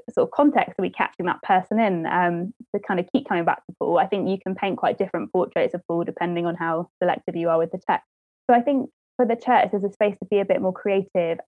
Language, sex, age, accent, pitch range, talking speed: English, female, 20-39, British, 175-220 Hz, 270 wpm